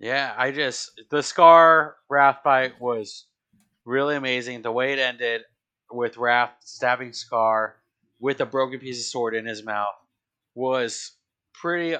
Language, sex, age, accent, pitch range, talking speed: English, male, 30-49, American, 115-145 Hz, 145 wpm